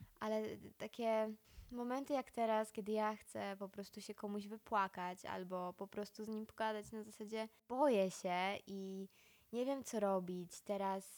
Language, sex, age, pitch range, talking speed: Polish, female, 20-39, 185-220 Hz, 155 wpm